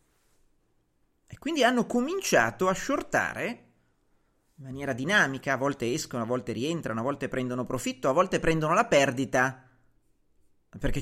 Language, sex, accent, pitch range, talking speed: Italian, male, native, 135-225 Hz, 130 wpm